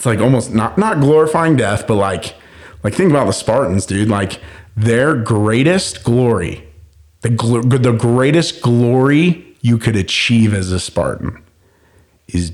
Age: 40-59